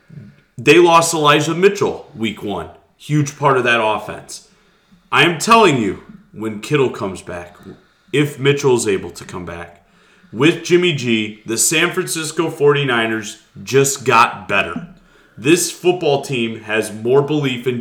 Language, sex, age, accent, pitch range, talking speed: English, male, 30-49, American, 115-160 Hz, 145 wpm